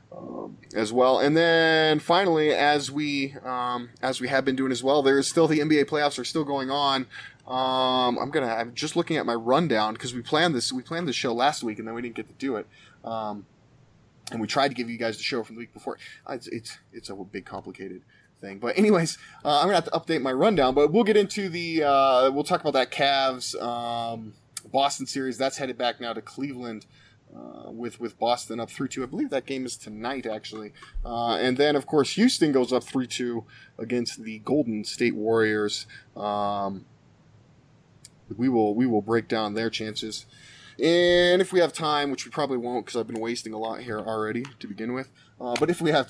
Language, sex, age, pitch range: English, male, 20-39, 115-145 Hz